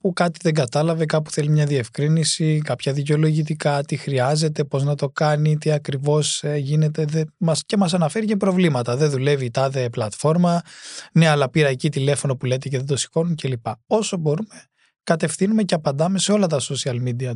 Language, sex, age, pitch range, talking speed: Greek, male, 20-39, 140-175 Hz, 180 wpm